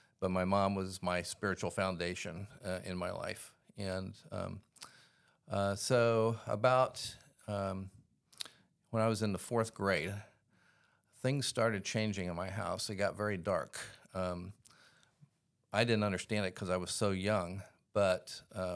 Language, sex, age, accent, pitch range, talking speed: English, male, 50-69, American, 95-110 Hz, 145 wpm